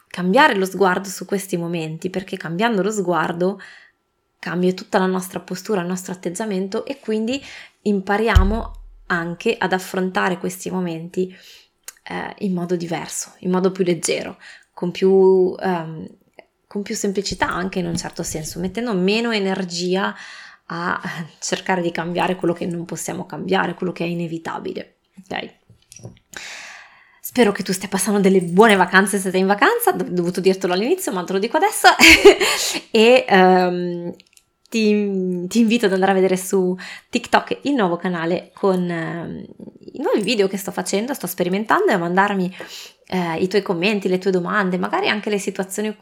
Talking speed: 155 wpm